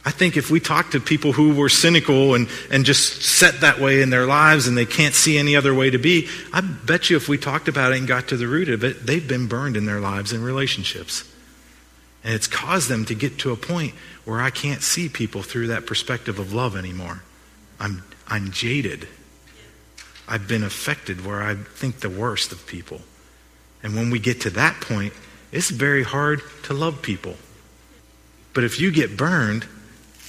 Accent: American